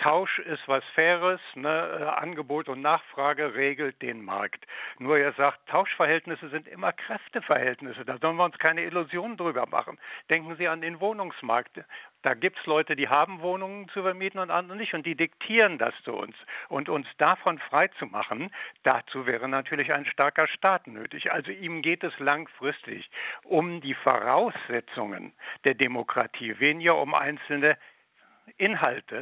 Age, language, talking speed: 60-79, German, 150 wpm